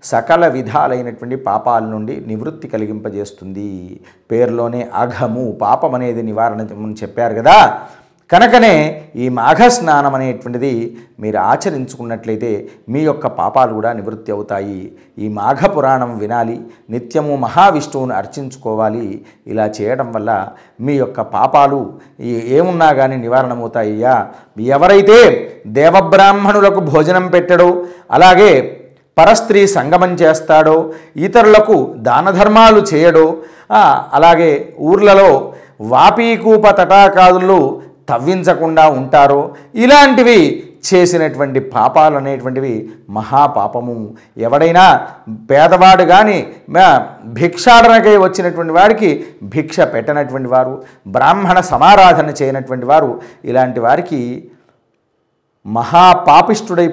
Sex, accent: male, native